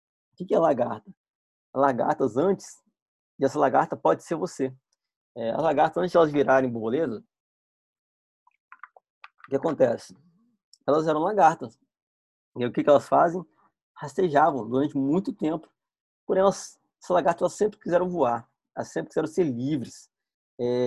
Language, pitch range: Portuguese, 130-165 Hz